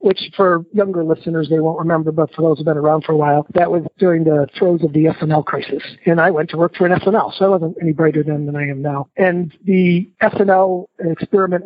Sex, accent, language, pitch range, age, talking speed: male, American, English, 155-185 Hz, 50-69, 245 wpm